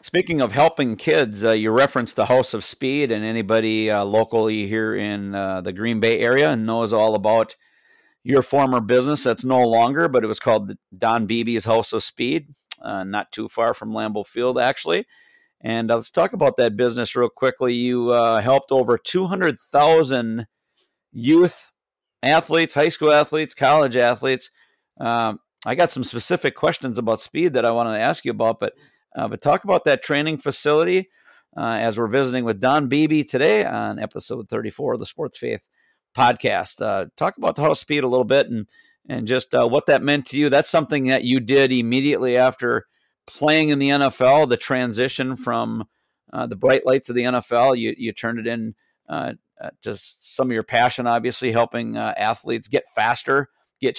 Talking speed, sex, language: 185 wpm, male, English